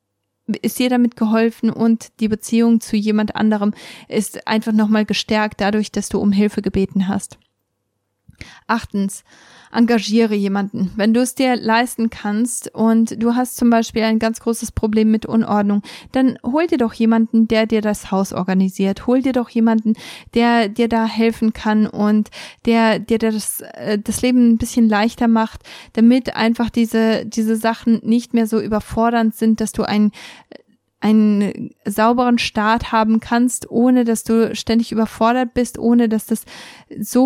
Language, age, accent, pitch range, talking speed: German, 20-39, German, 215-235 Hz, 160 wpm